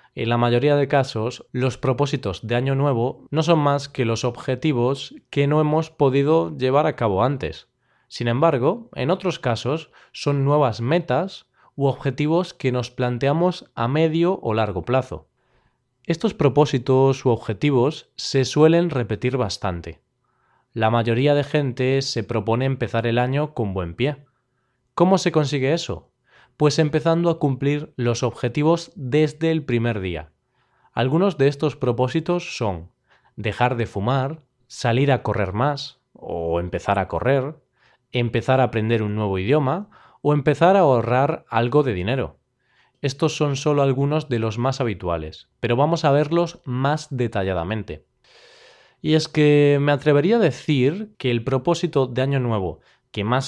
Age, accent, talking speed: 20-39, Spanish, 150 wpm